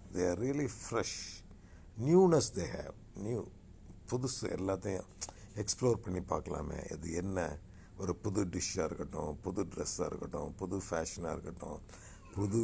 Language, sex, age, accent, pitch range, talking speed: Tamil, male, 60-79, native, 90-125 Hz, 135 wpm